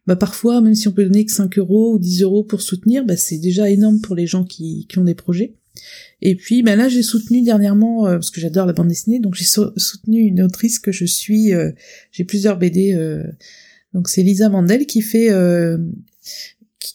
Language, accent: French, French